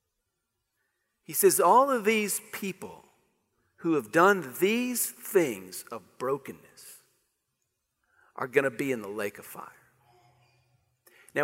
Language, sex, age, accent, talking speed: English, male, 50-69, American, 120 wpm